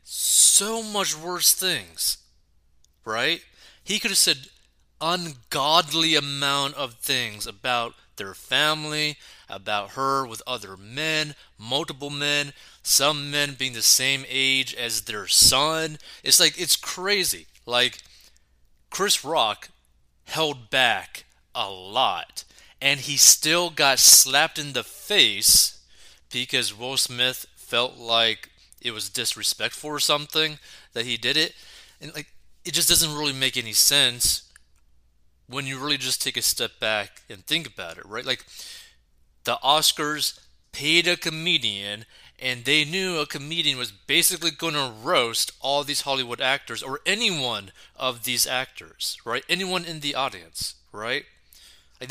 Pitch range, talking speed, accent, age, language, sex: 110-155 Hz, 135 wpm, American, 30-49, English, male